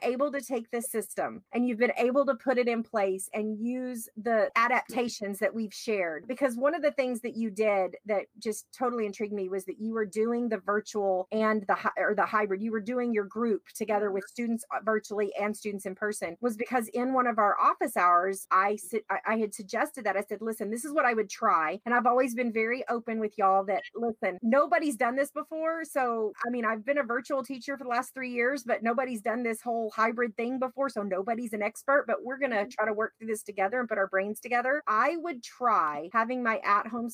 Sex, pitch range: female, 210-260 Hz